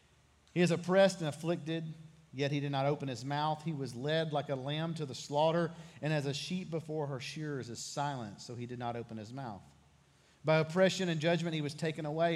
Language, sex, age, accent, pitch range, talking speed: English, male, 40-59, American, 130-155 Hz, 220 wpm